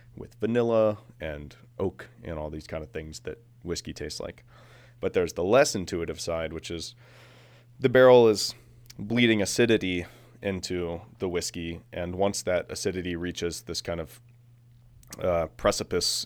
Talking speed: 150 wpm